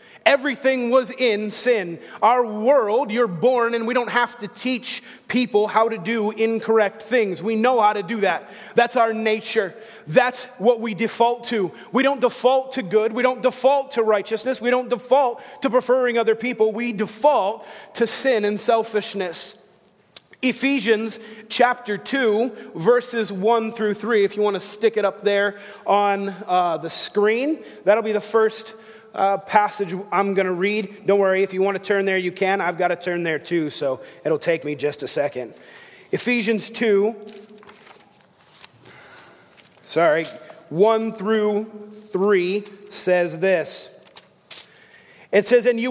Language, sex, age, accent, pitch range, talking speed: English, male, 30-49, American, 205-240 Hz, 160 wpm